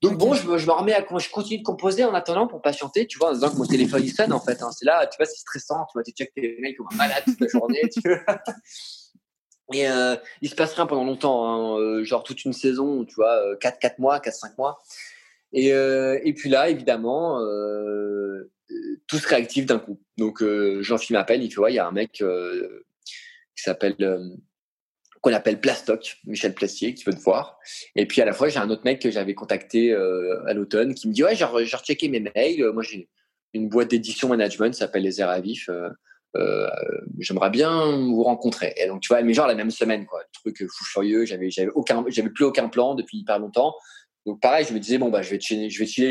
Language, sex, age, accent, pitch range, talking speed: French, male, 20-39, French, 110-185 Hz, 235 wpm